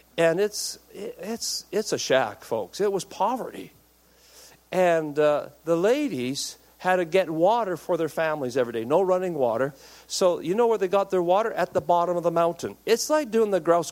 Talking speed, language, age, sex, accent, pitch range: 195 wpm, English, 50-69, male, American, 160-245 Hz